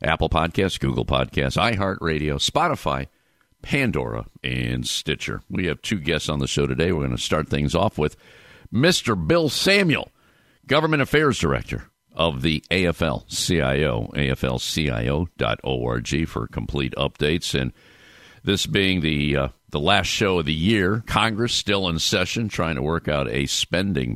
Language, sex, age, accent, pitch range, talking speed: English, male, 50-69, American, 75-110 Hz, 145 wpm